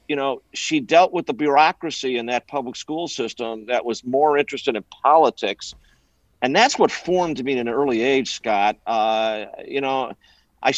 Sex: male